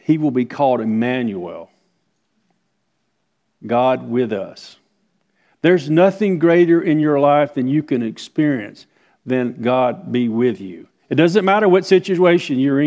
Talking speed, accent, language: 135 wpm, American, English